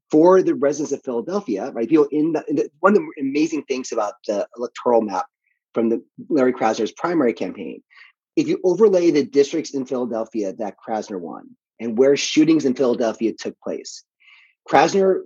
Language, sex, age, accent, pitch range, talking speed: English, male, 30-49, American, 115-160 Hz, 175 wpm